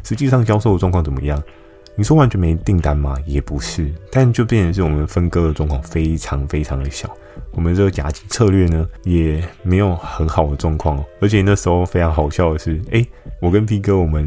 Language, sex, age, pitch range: Chinese, male, 20-39, 80-100 Hz